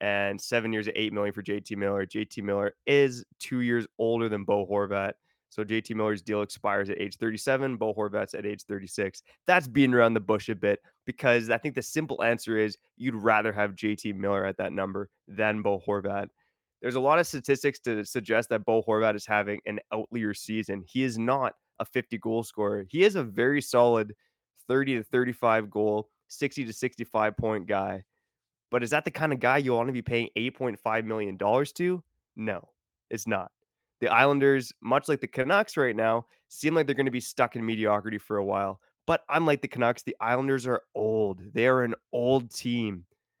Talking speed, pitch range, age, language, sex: 195 wpm, 105-130 Hz, 20-39, English, male